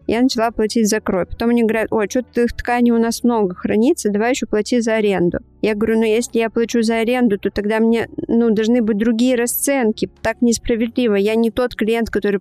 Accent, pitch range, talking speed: native, 205-245 Hz, 215 wpm